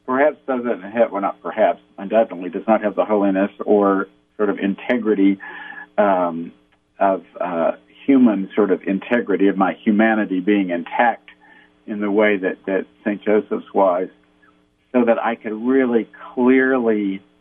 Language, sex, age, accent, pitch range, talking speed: English, male, 50-69, American, 90-120 Hz, 145 wpm